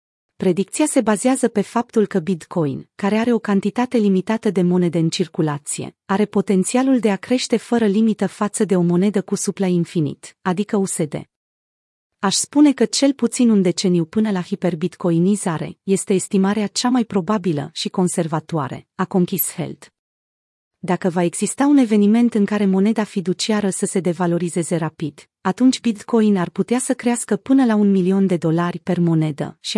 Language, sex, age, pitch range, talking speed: Romanian, female, 30-49, 175-220 Hz, 160 wpm